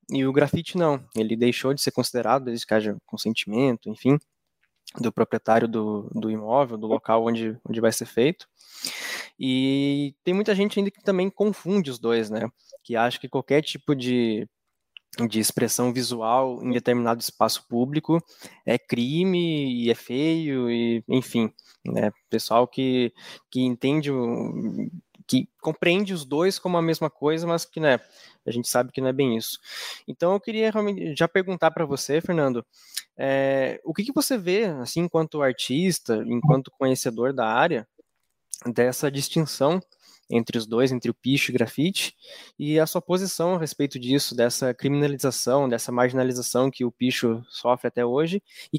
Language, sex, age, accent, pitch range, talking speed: Portuguese, male, 10-29, Brazilian, 120-165 Hz, 160 wpm